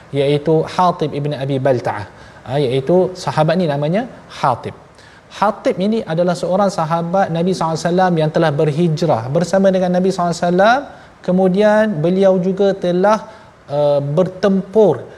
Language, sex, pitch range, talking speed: Malayalam, male, 145-190 Hz, 140 wpm